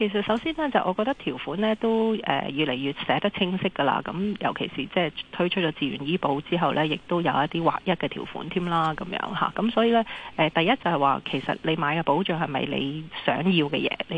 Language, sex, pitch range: Chinese, female, 150-200 Hz